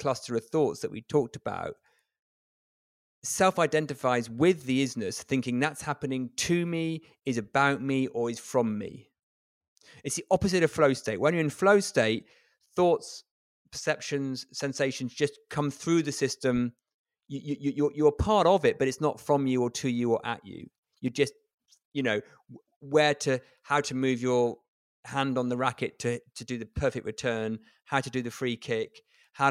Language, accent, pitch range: English, British, 125-160 Hz